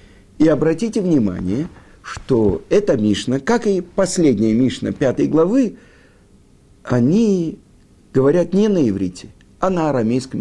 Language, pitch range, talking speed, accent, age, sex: Russian, 100-170 Hz, 115 wpm, native, 50-69, male